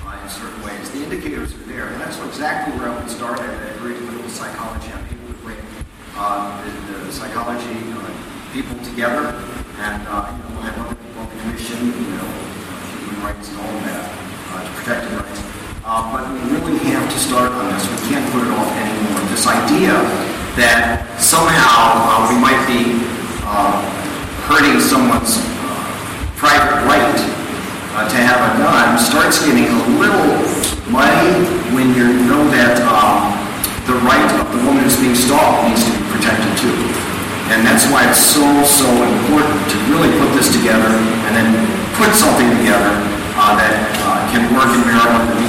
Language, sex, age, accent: English, male, 40-59, American